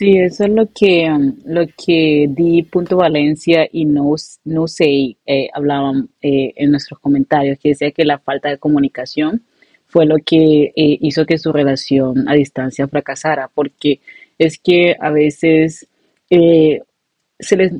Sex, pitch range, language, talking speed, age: female, 145-170 Hz, Spanish, 155 wpm, 30-49